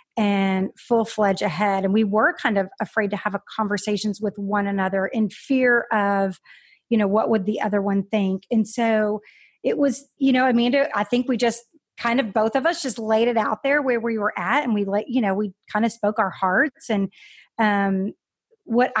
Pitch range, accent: 205-240 Hz, American